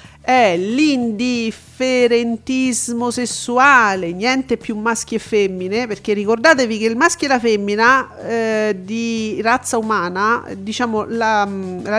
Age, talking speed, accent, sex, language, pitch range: 40-59, 115 wpm, native, female, Italian, 210-285 Hz